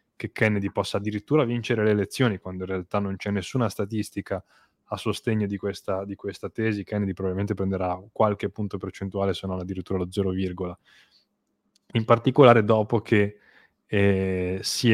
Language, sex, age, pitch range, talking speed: Italian, male, 10-29, 95-110 Hz, 155 wpm